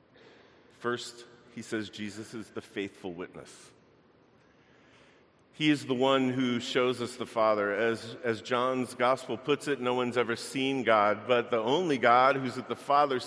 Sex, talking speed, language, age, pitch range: male, 165 wpm, English, 50-69, 105-125 Hz